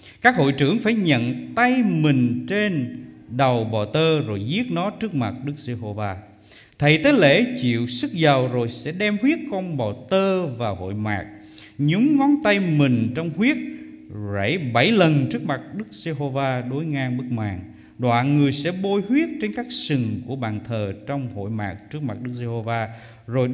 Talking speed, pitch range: 180 wpm, 110-170 Hz